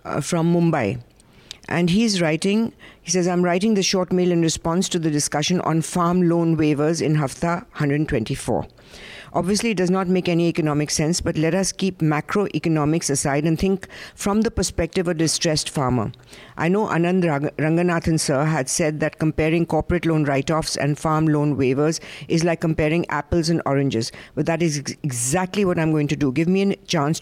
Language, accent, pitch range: English, Indian, 150-175 Hz